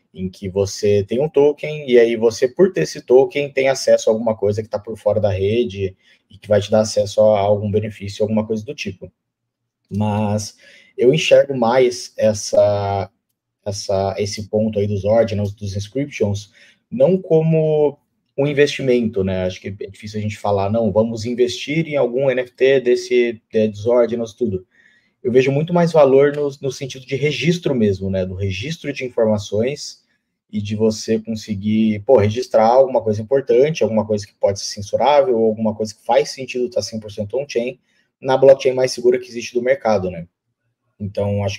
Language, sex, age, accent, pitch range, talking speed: Portuguese, male, 20-39, Brazilian, 105-135 Hz, 175 wpm